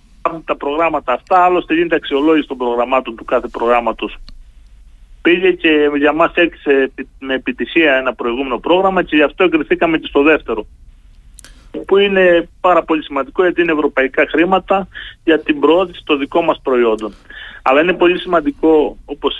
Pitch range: 135-170 Hz